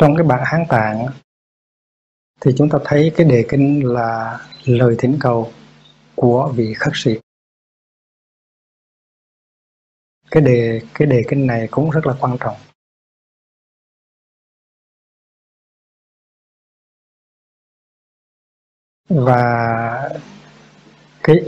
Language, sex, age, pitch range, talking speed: Vietnamese, male, 20-39, 115-140 Hz, 90 wpm